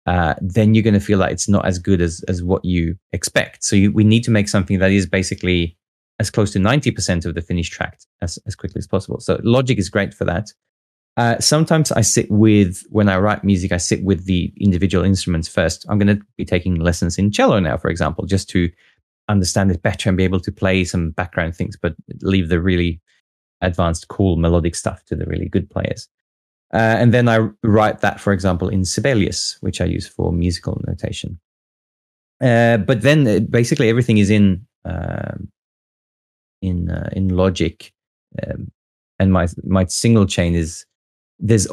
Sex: male